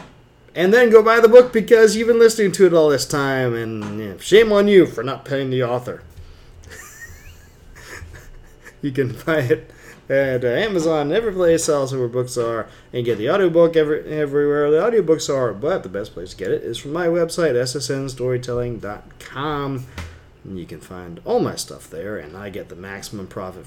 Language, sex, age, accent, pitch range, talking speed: English, male, 30-49, American, 110-155 Hz, 175 wpm